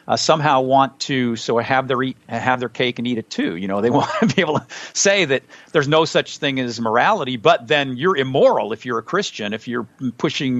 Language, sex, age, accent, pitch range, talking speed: English, male, 50-69, American, 115-145 Hz, 230 wpm